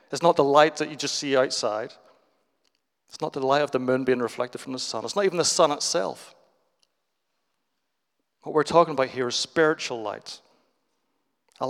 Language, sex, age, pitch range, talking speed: English, male, 40-59, 145-185 Hz, 185 wpm